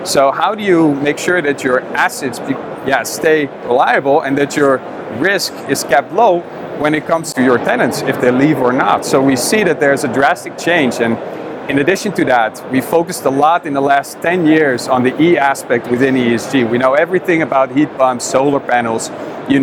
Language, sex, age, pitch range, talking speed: English, male, 40-59, 125-160 Hz, 200 wpm